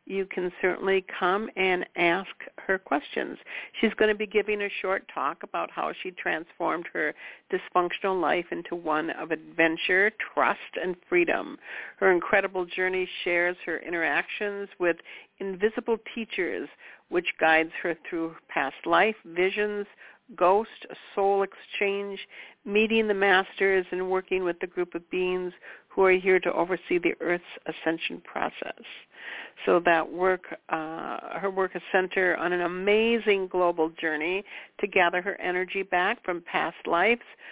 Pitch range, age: 175-200 Hz, 60-79